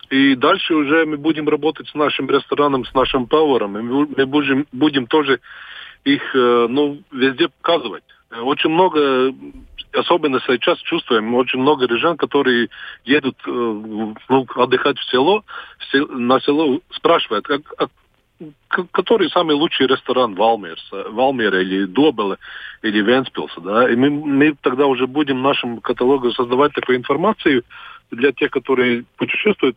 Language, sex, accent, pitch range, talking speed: Russian, male, native, 120-150 Hz, 130 wpm